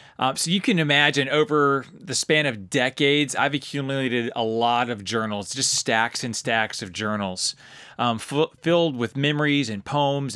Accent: American